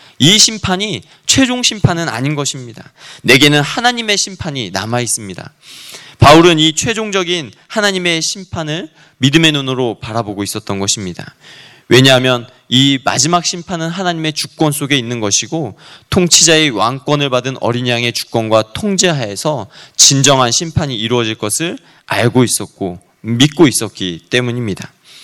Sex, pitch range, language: male, 120-160 Hz, Korean